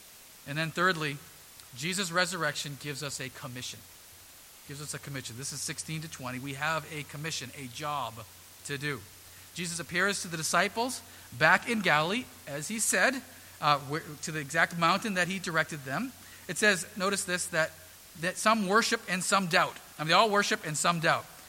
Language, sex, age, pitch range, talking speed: English, male, 40-59, 135-185 Hz, 180 wpm